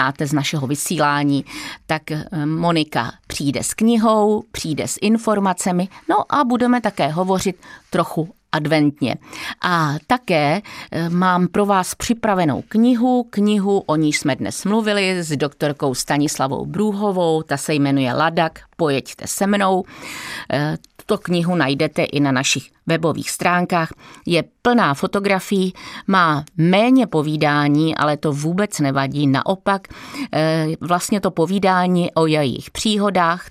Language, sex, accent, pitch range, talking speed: Czech, female, native, 150-200 Hz, 120 wpm